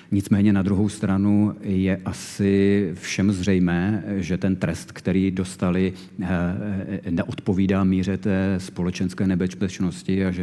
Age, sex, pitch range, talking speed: 40-59, male, 90-100 Hz, 115 wpm